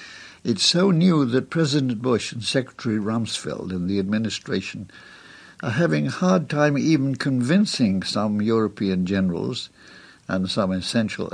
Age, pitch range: 60-79, 105-145 Hz